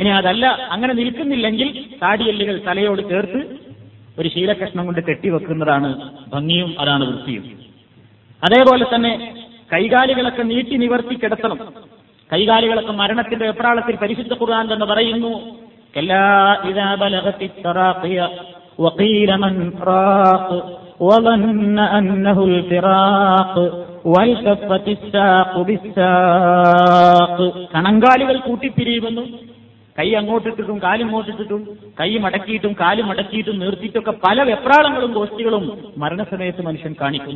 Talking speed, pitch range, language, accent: 75 wpm, 170-225 Hz, Malayalam, native